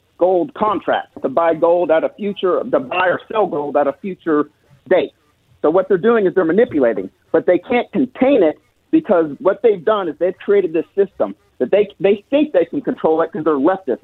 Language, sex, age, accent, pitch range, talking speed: English, male, 50-69, American, 160-225 Hz, 210 wpm